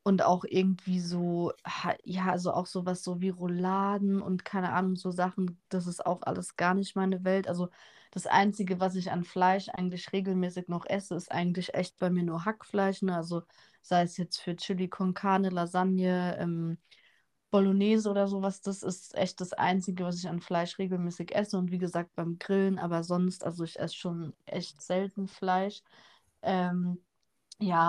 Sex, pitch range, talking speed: female, 175-190 Hz, 175 wpm